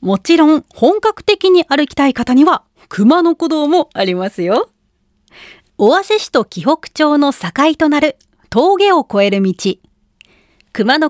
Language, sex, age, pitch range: Japanese, female, 40-59, 205-335 Hz